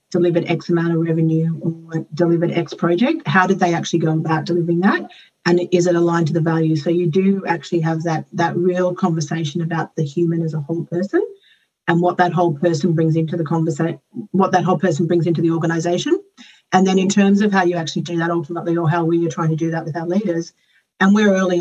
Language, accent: English, Australian